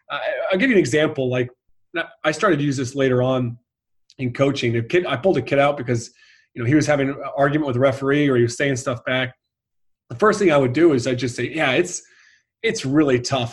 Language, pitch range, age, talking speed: English, 130-180 Hz, 30-49, 240 wpm